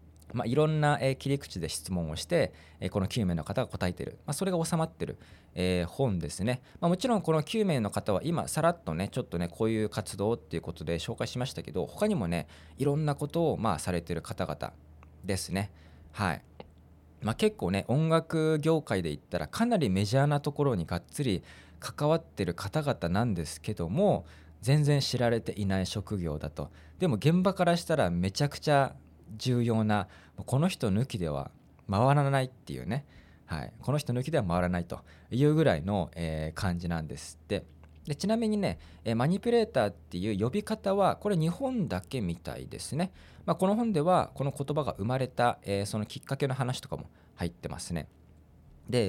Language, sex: Japanese, male